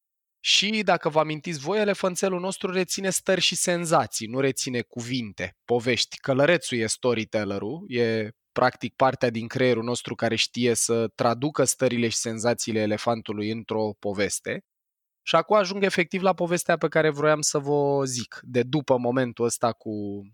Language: Romanian